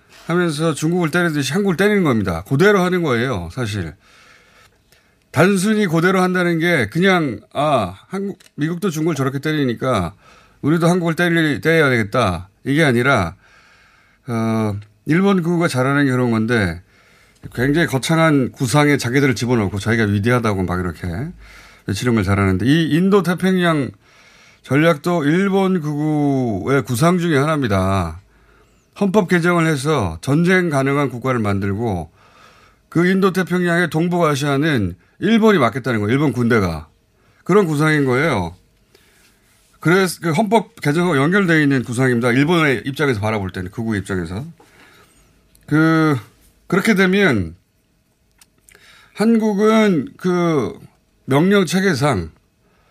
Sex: male